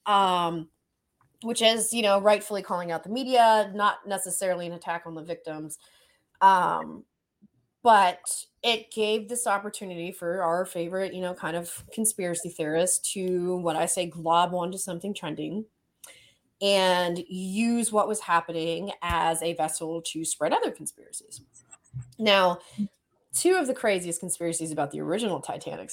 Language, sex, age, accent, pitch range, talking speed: English, female, 20-39, American, 170-220 Hz, 145 wpm